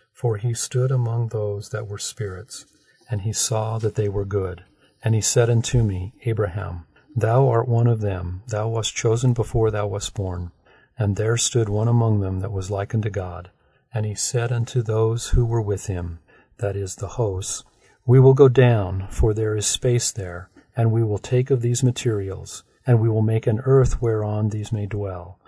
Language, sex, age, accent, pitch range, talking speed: English, male, 50-69, American, 100-120 Hz, 195 wpm